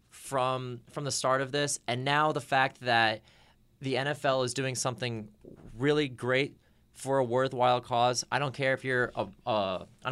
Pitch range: 125-160 Hz